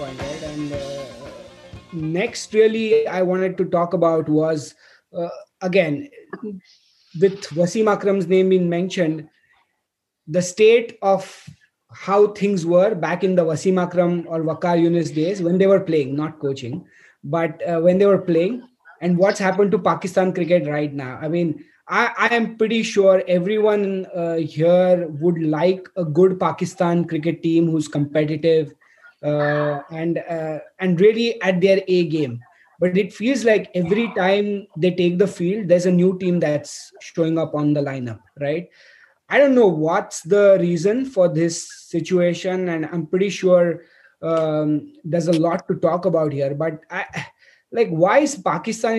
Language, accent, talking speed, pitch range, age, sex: English, Indian, 160 wpm, 160-195 Hz, 20-39, male